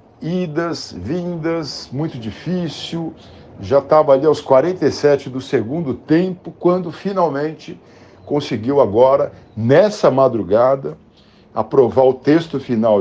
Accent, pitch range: Brazilian, 120-155 Hz